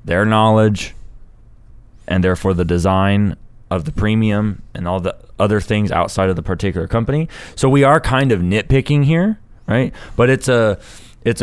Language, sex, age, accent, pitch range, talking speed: English, male, 20-39, American, 95-115 Hz, 165 wpm